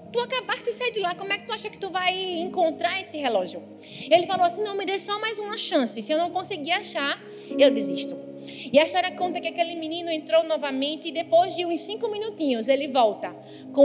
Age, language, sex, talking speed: 20-39, Portuguese, female, 225 wpm